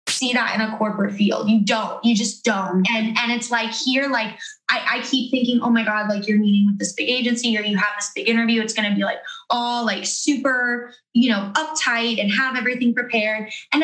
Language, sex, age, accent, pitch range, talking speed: English, female, 20-39, American, 220-280 Hz, 225 wpm